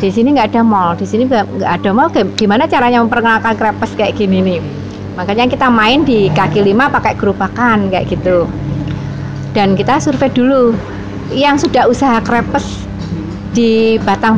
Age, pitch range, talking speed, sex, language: 30-49, 185-240 Hz, 155 wpm, female, Indonesian